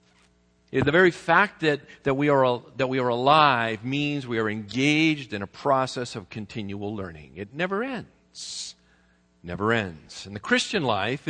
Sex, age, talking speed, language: male, 50-69, 165 wpm, English